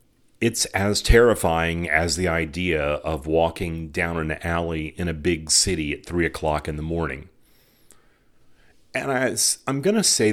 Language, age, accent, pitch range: English, 40-59, American, 80-95 Hz